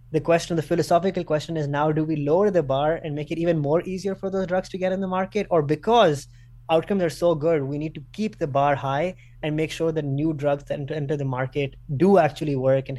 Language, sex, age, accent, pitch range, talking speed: English, male, 20-39, Indian, 140-165 Hz, 245 wpm